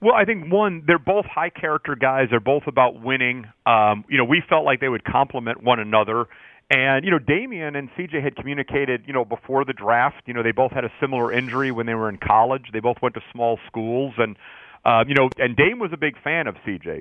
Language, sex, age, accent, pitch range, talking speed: English, male, 40-59, American, 115-140 Hz, 235 wpm